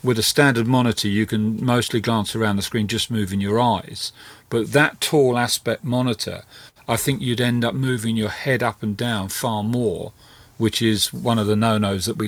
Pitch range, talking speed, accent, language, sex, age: 105-120 Hz, 200 wpm, British, English, male, 40-59